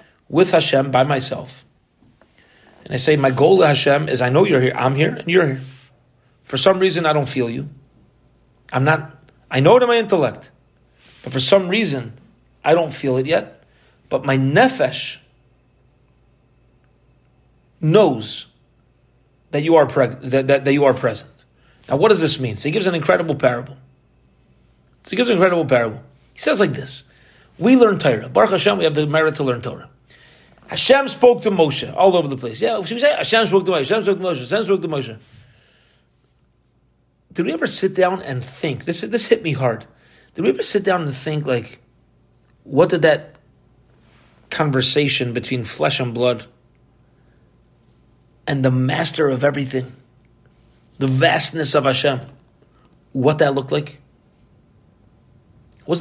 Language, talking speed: English, 165 wpm